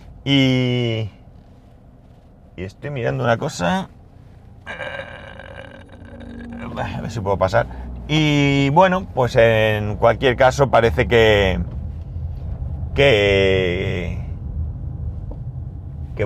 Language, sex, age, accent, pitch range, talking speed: Spanish, male, 30-49, Spanish, 95-140 Hz, 75 wpm